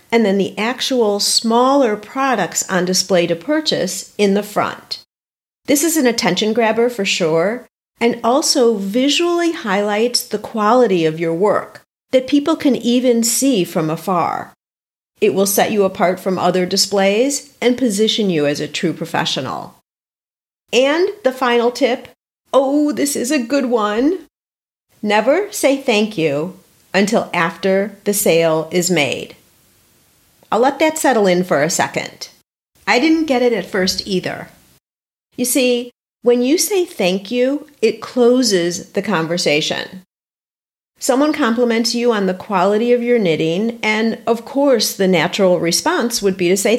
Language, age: English, 50-69